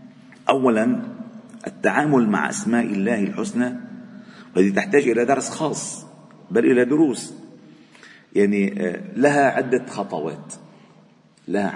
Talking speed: 95 wpm